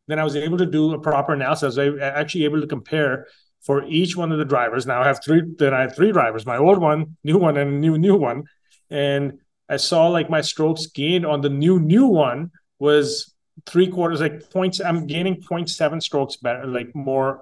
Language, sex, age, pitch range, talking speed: English, male, 30-49, 125-155 Hz, 220 wpm